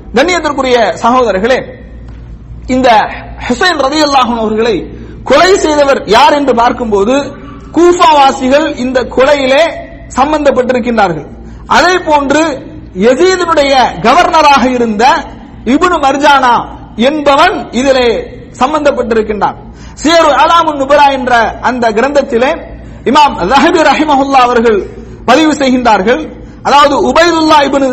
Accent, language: Indian, English